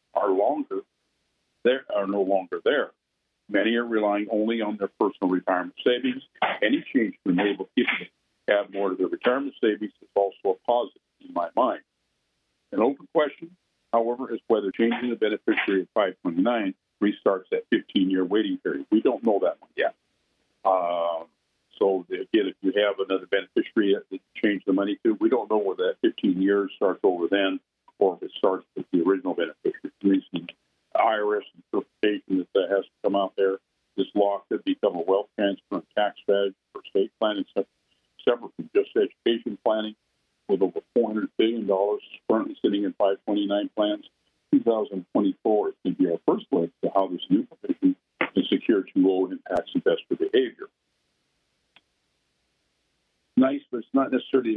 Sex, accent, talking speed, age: male, American, 165 wpm, 50-69